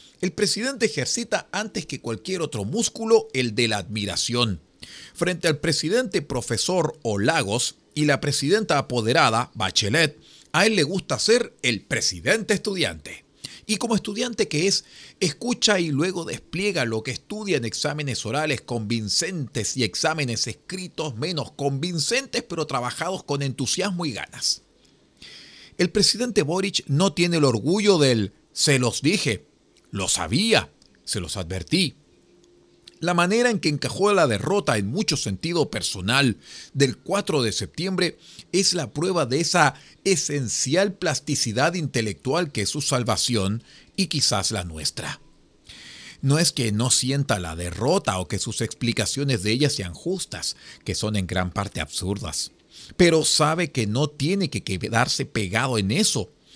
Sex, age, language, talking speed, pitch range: male, 40-59, Spanish, 145 wpm, 115-180 Hz